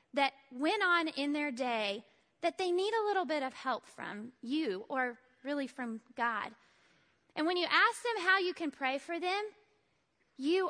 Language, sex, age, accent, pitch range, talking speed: English, female, 20-39, American, 250-335 Hz, 180 wpm